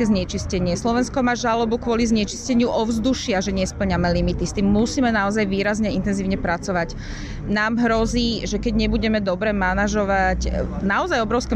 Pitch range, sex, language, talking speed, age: 185-240 Hz, female, Slovak, 135 wpm, 30-49